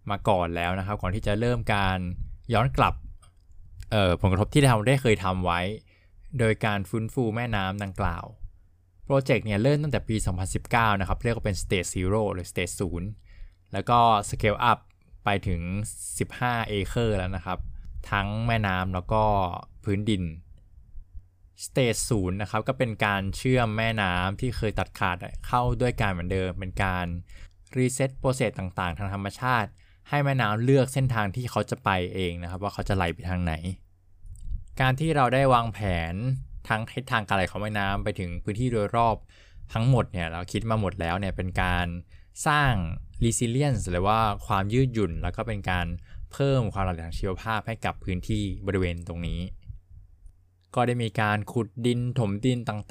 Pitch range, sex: 90-115 Hz, male